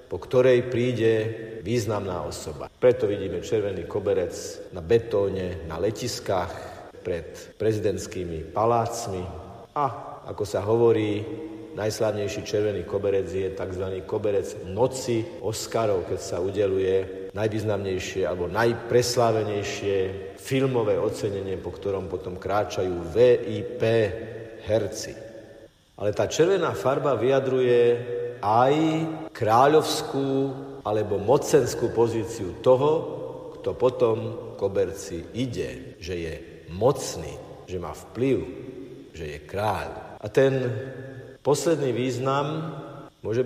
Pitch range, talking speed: 100-160 Hz, 100 wpm